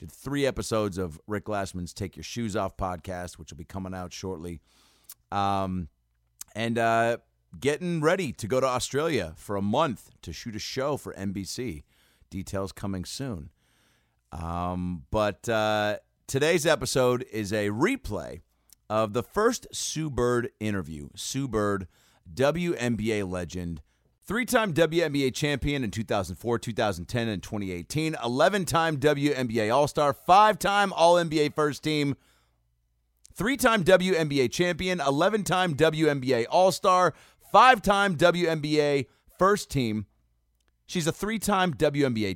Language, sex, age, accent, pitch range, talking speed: English, male, 30-49, American, 95-160 Hz, 120 wpm